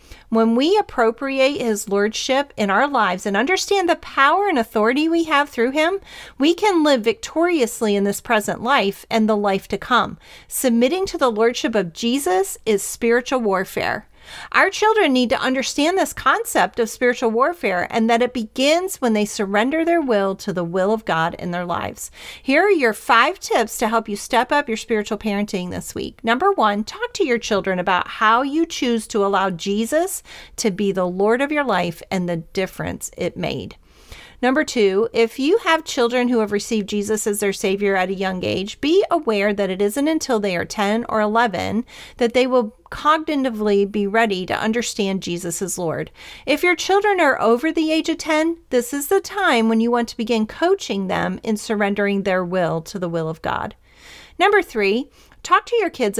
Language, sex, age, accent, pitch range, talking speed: English, female, 40-59, American, 205-295 Hz, 195 wpm